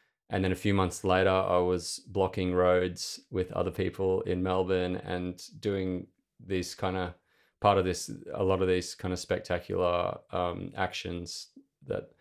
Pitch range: 90-100 Hz